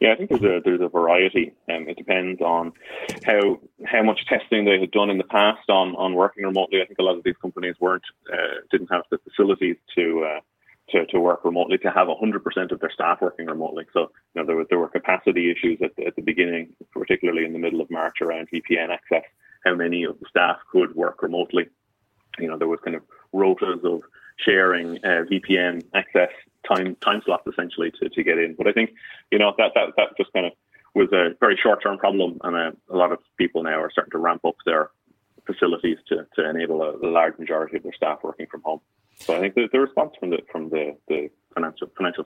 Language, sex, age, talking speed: English, male, 20-39, 230 wpm